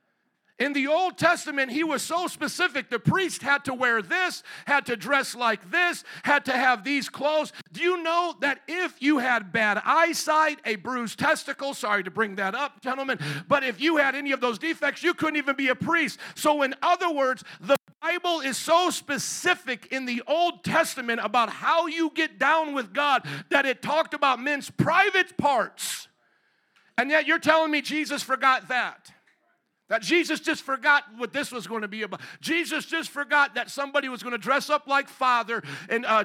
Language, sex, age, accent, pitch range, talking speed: English, male, 50-69, American, 225-290 Hz, 190 wpm